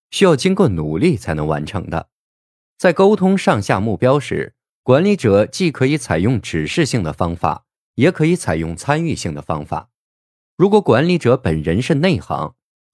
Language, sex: Chinese, male